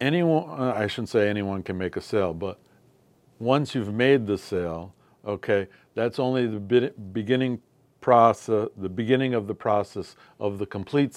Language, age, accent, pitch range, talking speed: English, 60-79, American, 105-130 Hz, 155 wpm